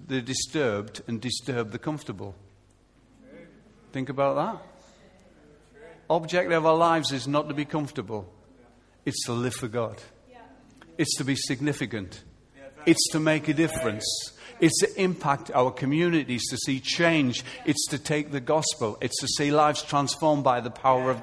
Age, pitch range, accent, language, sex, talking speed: 50-69, 125-165 Hz, British, English, male, 155 wpm